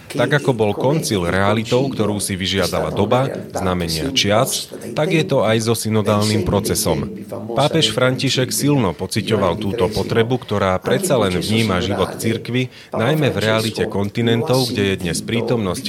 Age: 30-49